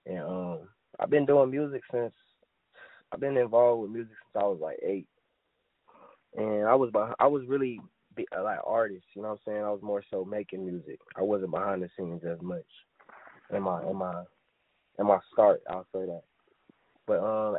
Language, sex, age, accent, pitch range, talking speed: English, male, 20-39, American, 100-125 Hz, 190 wpm